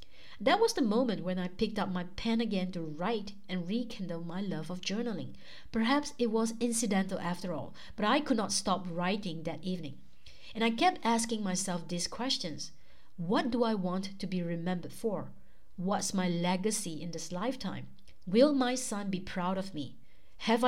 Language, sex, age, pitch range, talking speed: English, female, 60-79, 180-230 Hz, 180 wpm